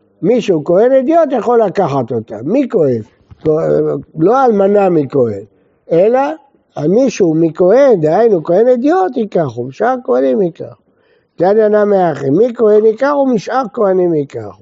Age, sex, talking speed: 60-79, male, 135 wpm